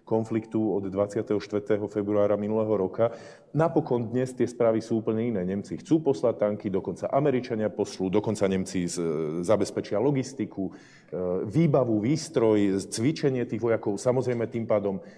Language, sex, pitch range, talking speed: Slovak, male, 105-130 Hz, 125 wpm